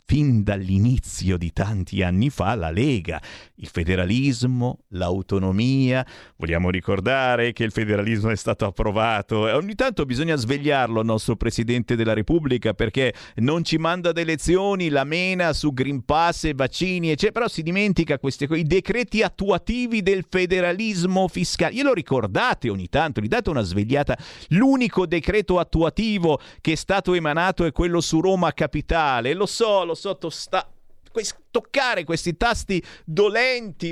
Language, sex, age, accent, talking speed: Italian, male, 50-69, native, 140 wpm